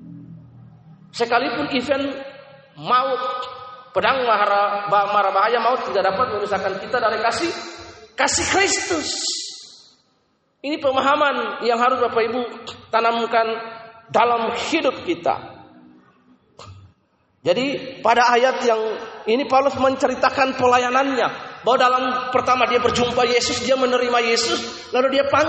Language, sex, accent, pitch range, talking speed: Indonesian, male, native, 230-290 Hz, 100 wpm